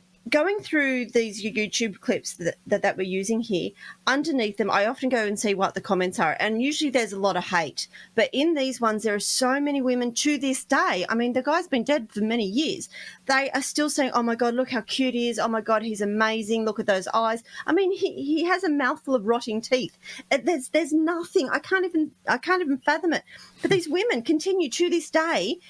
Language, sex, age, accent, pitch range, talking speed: English, female, 30-49, Australian, 215-290 Hz, 230 wpm